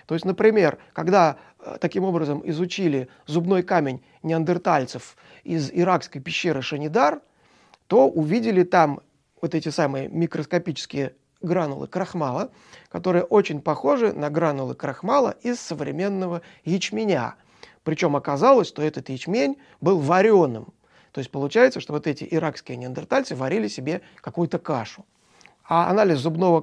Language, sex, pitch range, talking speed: Russian, male, 145-185 Hz, 120 wpm